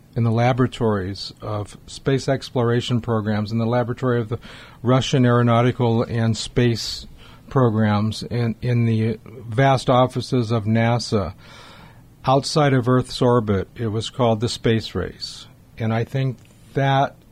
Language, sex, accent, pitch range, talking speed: English, male, American, 110-130 Hz, 130 wpm